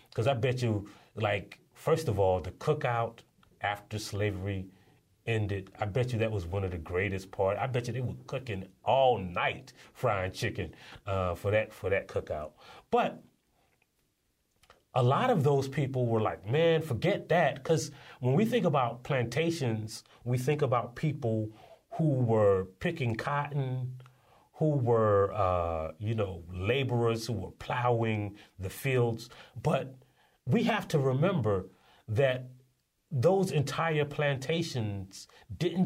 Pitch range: 105-140 Hz